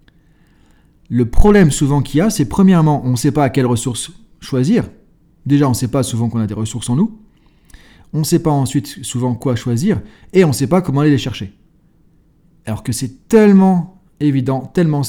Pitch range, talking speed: 130-170 Hz, 205 wpm